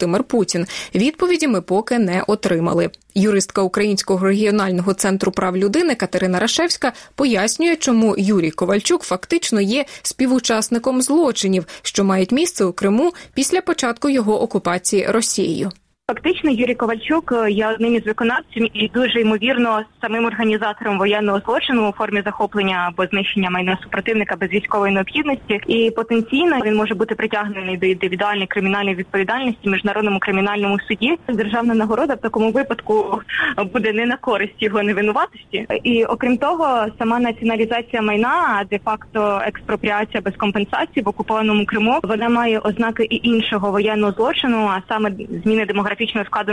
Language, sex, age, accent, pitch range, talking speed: Russian, female, 20-39, native, 195-230 Hz, 140 wpm